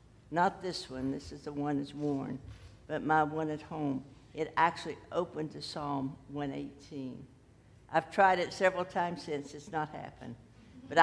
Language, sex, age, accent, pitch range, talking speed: English, female, 60-79, American, 130-170 Hz, 165 wpm